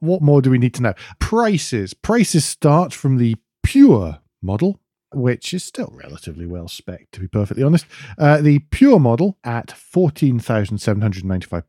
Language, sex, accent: English, male, British